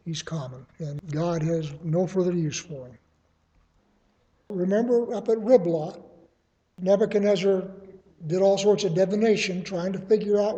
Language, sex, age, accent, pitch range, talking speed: English, male, 60-79, American, 170-210 Hz, 135 wpm